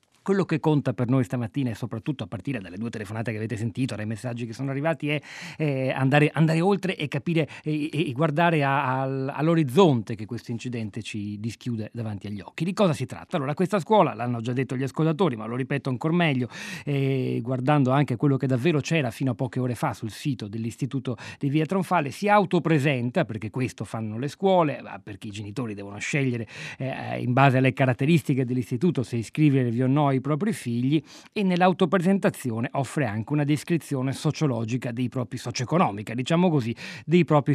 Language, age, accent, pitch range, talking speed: Italian, 40-59, native, 120-155 Hz, 180 wpm